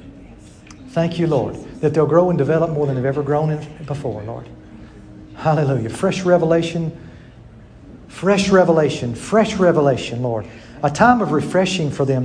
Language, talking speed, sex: English, 140 wpm, male